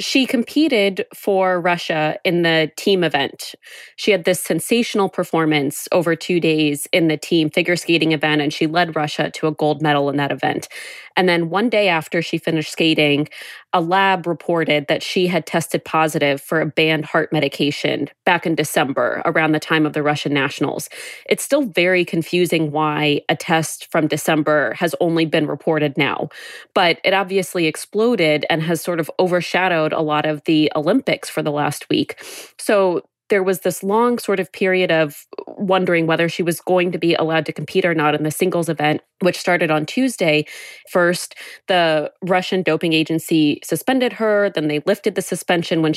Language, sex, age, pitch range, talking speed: English, female, 20-39, 155-185 Hz, 180 wpm